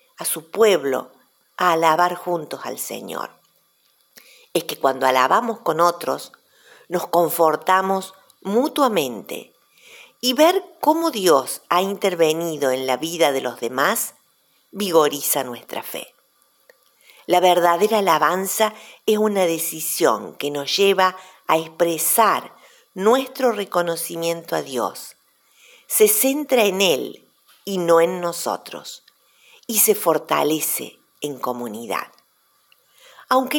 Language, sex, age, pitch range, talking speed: Spanish, female, 50-69, 160-225 Hz, 110 wpm